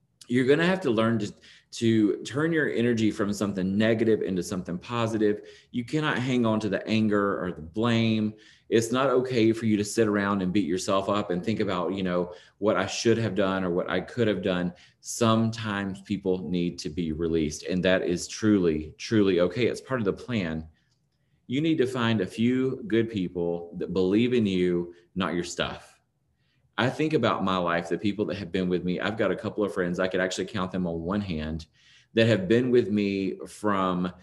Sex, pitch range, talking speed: male, 90-115 Hz, 210 wpm